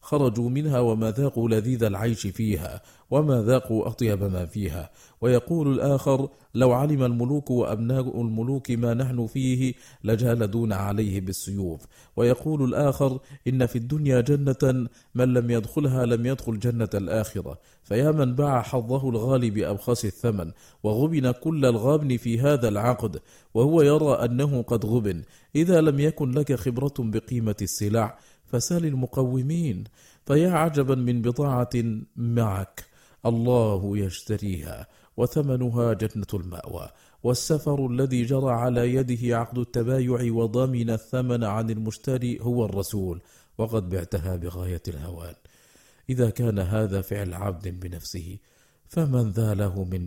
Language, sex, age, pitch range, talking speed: Arabic, male, 40-59, 100-130 Hz, 120 wpm